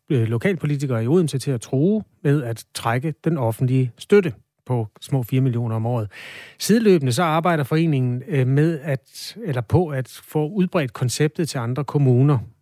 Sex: male